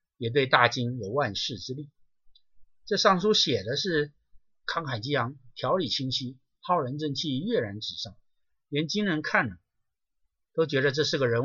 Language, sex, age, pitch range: Chinese, male, 50-69, 115-155 Hz